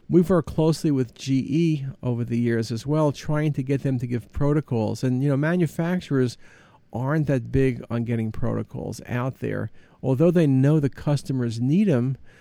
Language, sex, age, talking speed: English, male, 50-69, 175 wpm